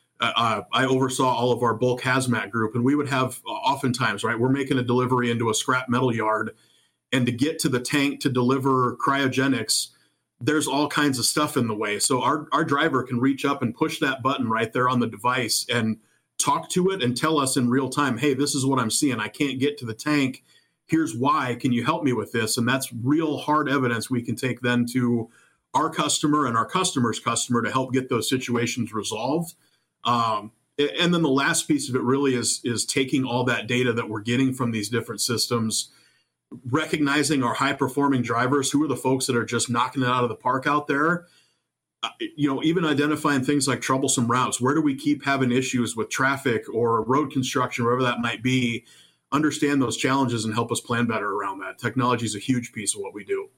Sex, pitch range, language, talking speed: male, 120-145 Hz, English, 215 wpm